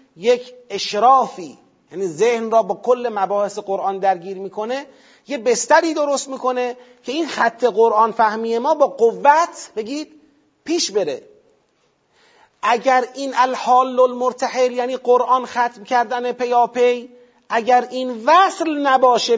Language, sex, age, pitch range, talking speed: Persian, male, 40-59, 235-310 Hz, 125 wpm